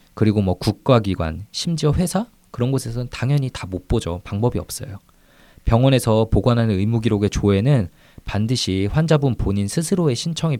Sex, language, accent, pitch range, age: male, Korean, native, 95-125 Hz, 20-39